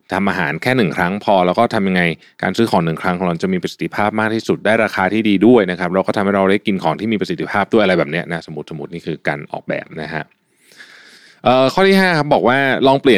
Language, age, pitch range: Thai, 20-39, 90-120 Hz